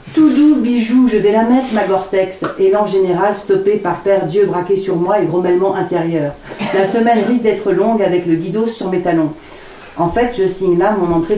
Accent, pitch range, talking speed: French, 175-215 Hz, 210 wpm